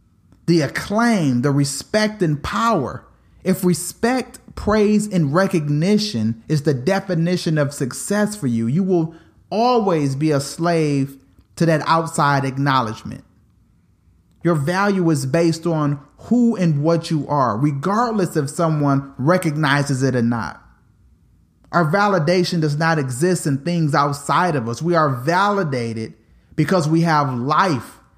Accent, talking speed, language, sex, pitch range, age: American, 130 wpm, English, male, 135-190 Hz, 30-49